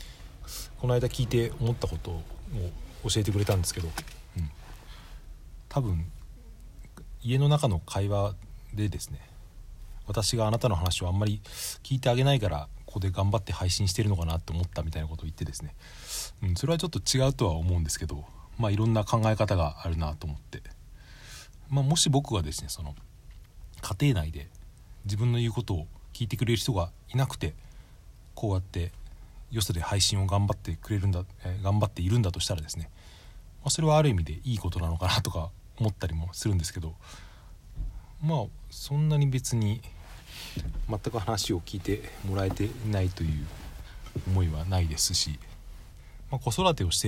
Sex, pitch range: male, 85-115 Hz